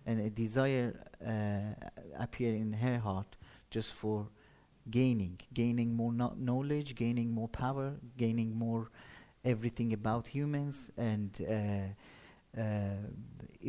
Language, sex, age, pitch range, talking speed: English, male, 40-59, 110-125 Hz, 110 wpm